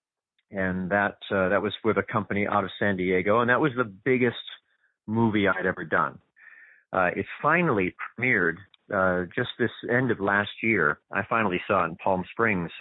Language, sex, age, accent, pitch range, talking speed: English, male, 30-49, American, 90-125 Hz, 185 wpm